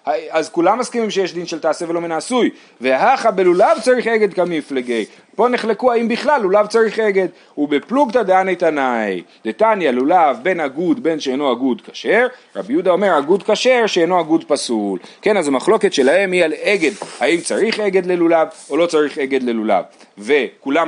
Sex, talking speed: male, 170 wpm